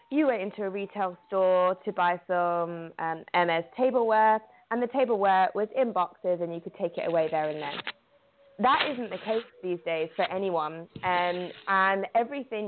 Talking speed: 180 wpm